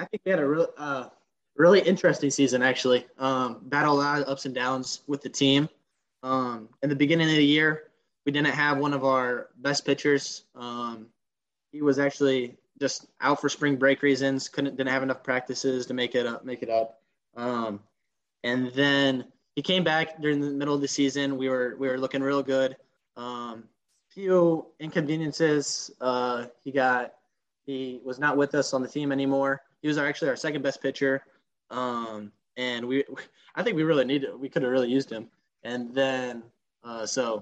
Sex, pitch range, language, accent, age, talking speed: male, 125-145 Hz, English, American, 20-39, 190 wpm